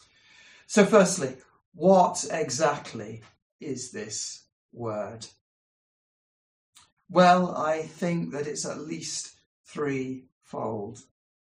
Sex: male